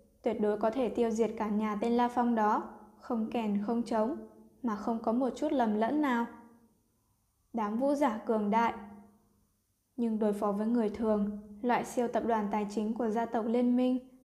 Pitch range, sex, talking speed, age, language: 215-245 Hz, female, 195 wpm, 10-29, Vietnamese